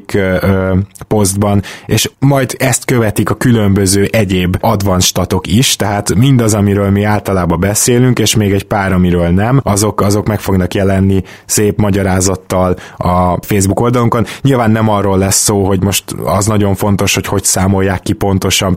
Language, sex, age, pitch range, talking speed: Hungarian, male, 20-39, 95-110 Hz, 150 wpm